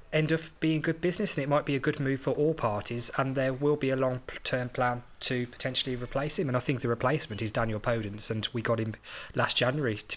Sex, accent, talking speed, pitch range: male, British, 250 wpm, 115-135 Hz